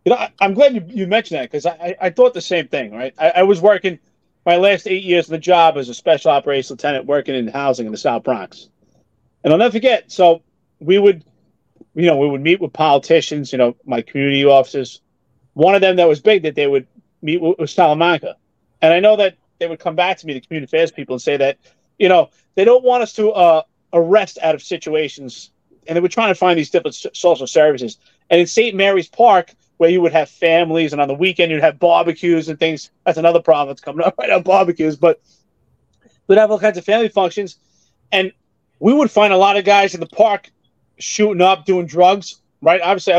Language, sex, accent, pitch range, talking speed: English, male, American, 155-205 Hz, 225 wpm